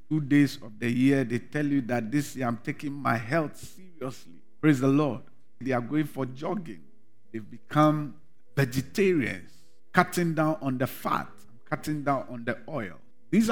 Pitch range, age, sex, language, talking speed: 130-170 Hz, 50-69, male, English, 170 wpm